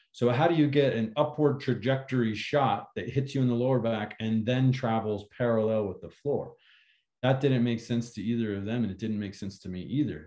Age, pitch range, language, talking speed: 30-49, 110-145 Hz, English, 230 wpm